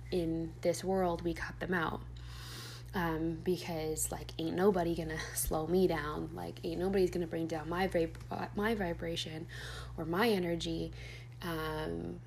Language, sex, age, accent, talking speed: English, female, 20-39, American, 145 wpm